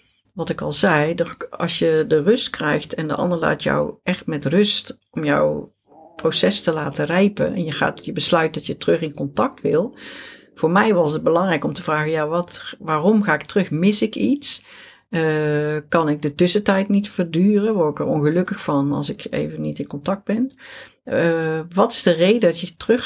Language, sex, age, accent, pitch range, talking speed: Dutch, female, 50-69, Dutch, 150-200 Hz, 205 wpm